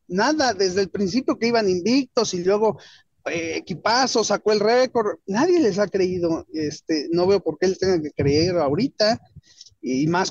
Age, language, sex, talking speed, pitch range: 40-59, Spanish, male, 175 wpm, 175-240 Hz